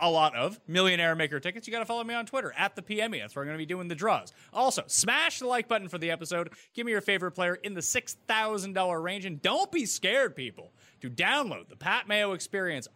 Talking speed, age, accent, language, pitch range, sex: 245 wpm, 30-49, American, English, 145-205 Hz, male